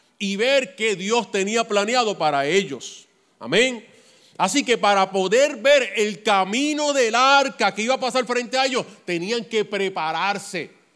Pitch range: 180-225 Hz